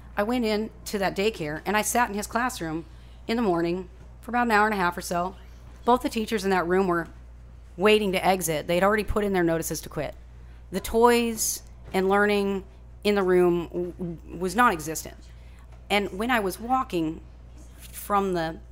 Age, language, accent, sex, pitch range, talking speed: 40-59, English, American, female, 150-195 Hz, 190 wpm